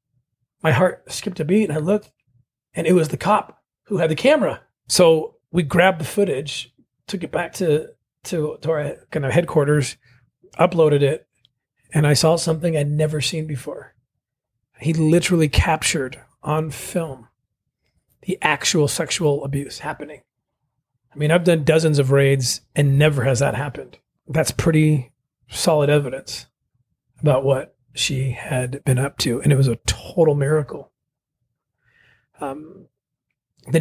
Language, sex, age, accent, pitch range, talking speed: English, male, 40-59, American, 130-160 Hz, 145 wpm